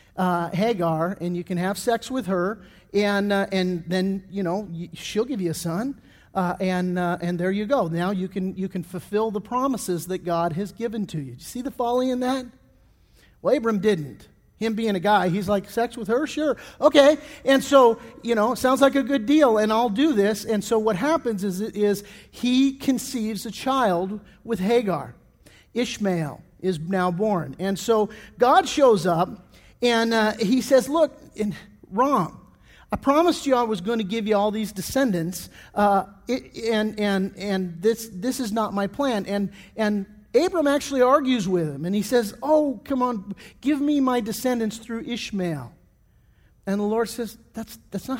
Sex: male